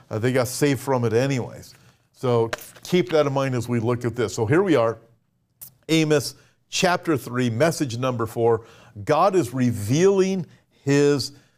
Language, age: English, 50-69